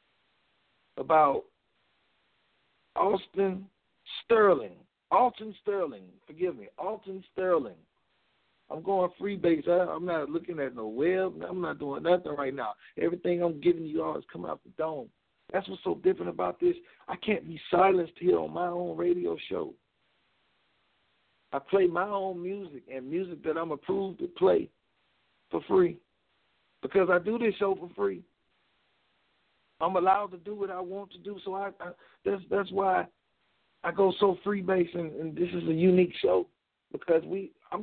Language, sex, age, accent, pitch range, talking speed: English, male, 50-69, American, 165-205 Hz, 160 wpm